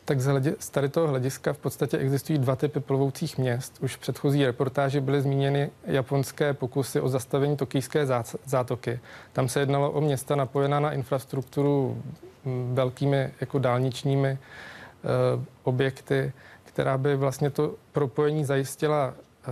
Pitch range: 130-140 Hz